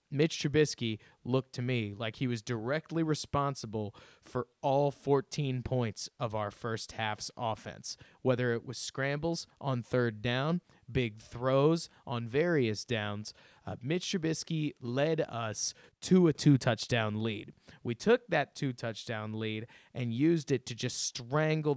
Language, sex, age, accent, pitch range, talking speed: English, male, 30-49, American, 115-160 Hz, 140 wpm